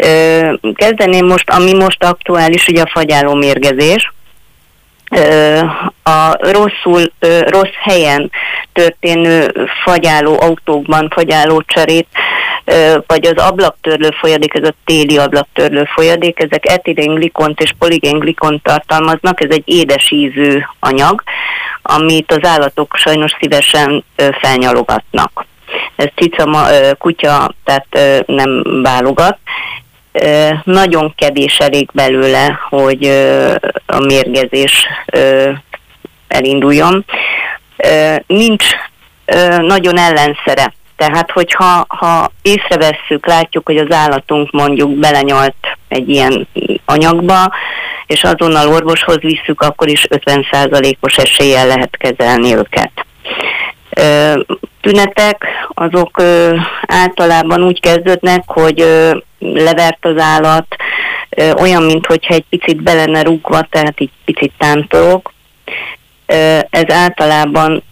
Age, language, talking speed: 30-49, Hungarian, 90 wpm